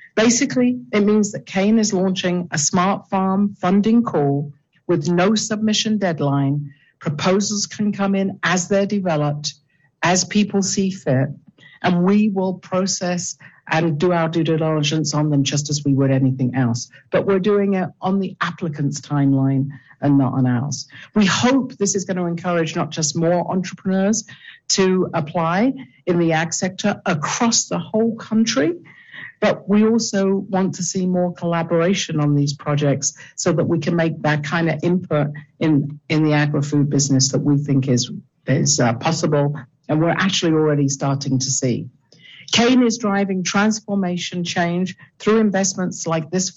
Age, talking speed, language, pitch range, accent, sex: 50-69, 160 wpm, English, 150-195 Hz, British, female